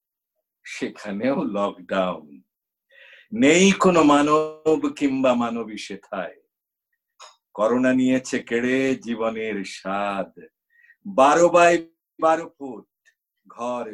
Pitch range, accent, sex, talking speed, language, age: 120-170 Hz, native, male, 80 wpm, Bengali, 50-69